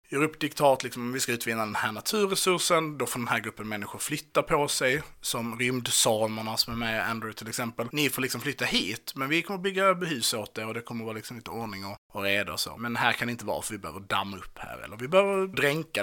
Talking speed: 270 wpm